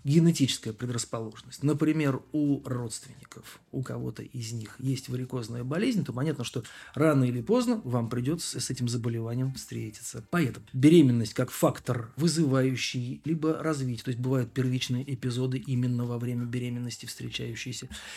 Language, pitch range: Russian, 120-145 Hz